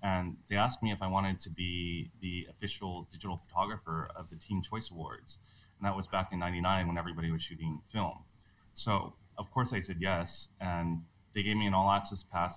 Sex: male